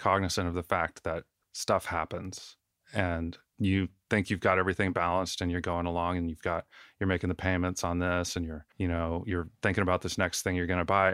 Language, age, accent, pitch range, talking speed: English, 30-49, American, 85-100 Hz, 220 wpm